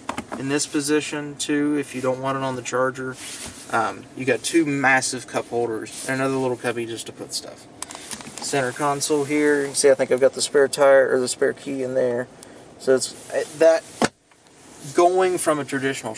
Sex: male